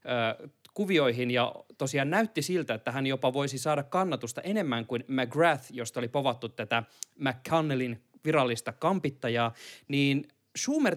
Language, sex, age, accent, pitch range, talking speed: Finnish, male, 20-39, native, 125-170 Hz, 125 wpm